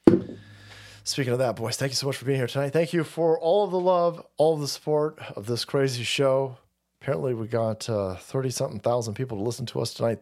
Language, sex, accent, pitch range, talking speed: English, male, American, 125-175 Hz, 230 wpm